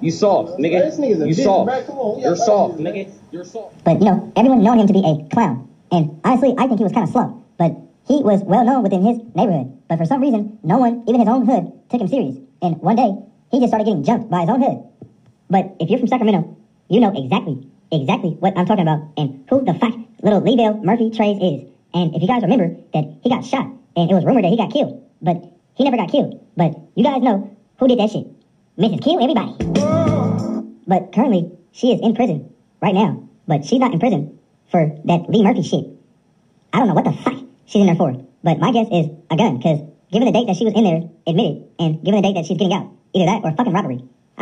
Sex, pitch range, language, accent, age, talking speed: male, 170-230 Hz, English, American, 40-59, 245 wpm